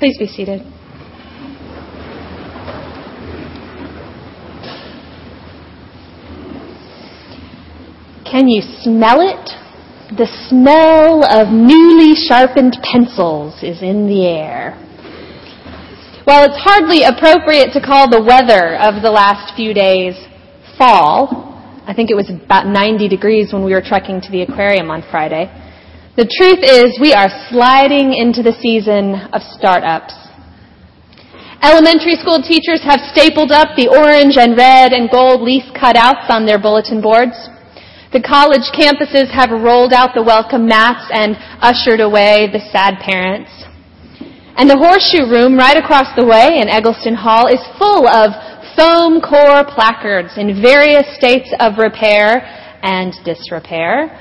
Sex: female